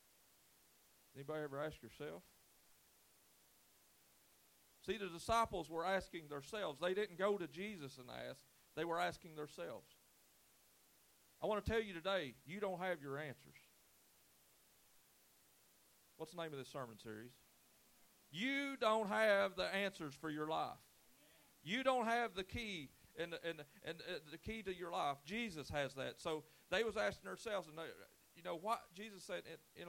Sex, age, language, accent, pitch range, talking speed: male, 40-59, English, American, 155-210 Hz, 155 wpm